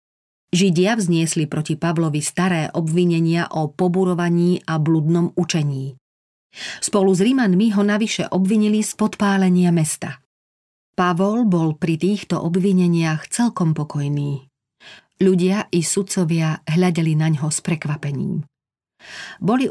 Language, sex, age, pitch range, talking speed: Slovak, female, 40-59, 155-185 Hz, 110 wpm